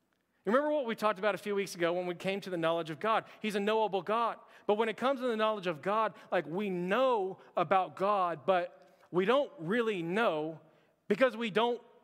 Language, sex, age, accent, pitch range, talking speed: English, male, 40-59, American, 190-240 Hz, 215 wpm